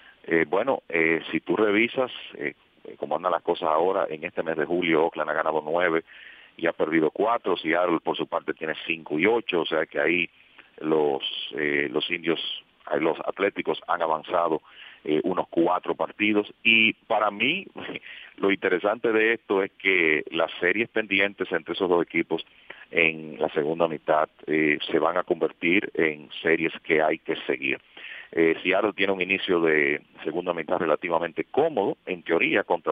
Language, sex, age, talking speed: English, male, 40-59, 175 wpm